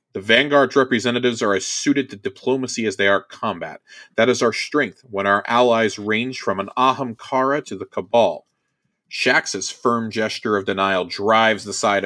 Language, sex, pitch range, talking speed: English, male, 100-140 Hz, 170 wpm